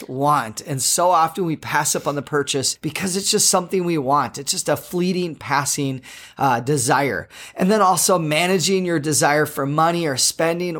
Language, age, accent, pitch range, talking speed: English, 30-49, American, 150-190 Hz, 185 wpm